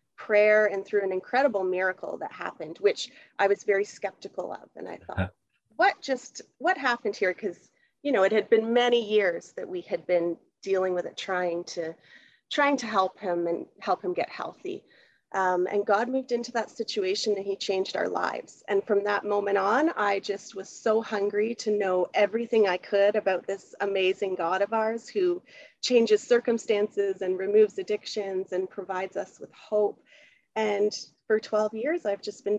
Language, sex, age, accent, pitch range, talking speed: English, female, 30-49, American, 195-235 Hz, 180 wpm